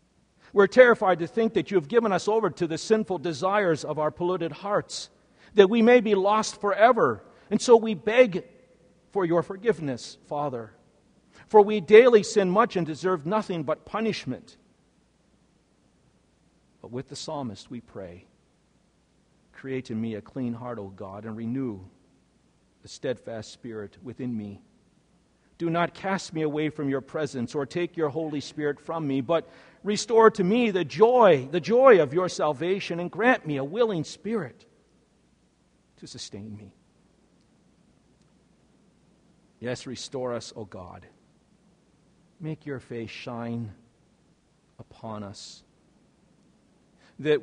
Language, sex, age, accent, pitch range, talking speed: English, male, 50-69, American, 130-200 Hz, 140 wpm